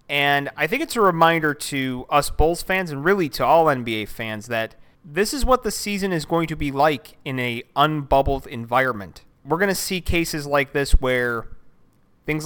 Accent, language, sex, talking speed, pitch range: American, English, male, 195 wpm, 125-155 Hz